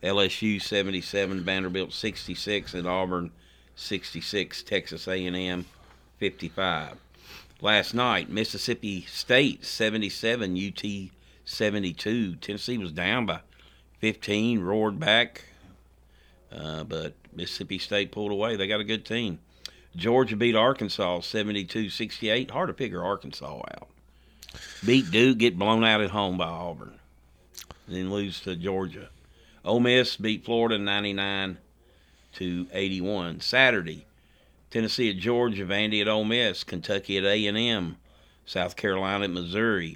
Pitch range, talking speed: 90-110 Hz, 120 wpm